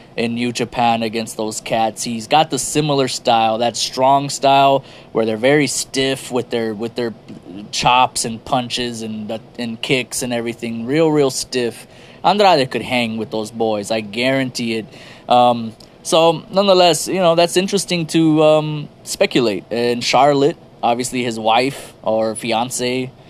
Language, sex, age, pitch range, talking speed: English, male, 20-39, 115-140 Hz, 150 wpm